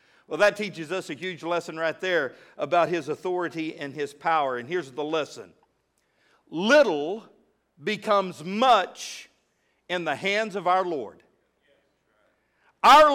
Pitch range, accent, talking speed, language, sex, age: 175-245 Hz, American, 130 wpm, English, male, 50-69